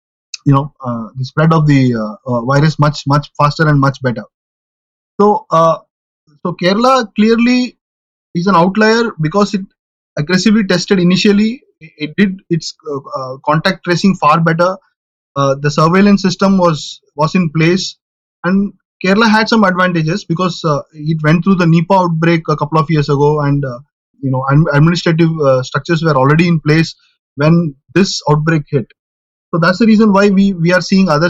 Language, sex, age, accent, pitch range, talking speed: English, male, 30-49, Indian, 150-190 Hz, 175 wpm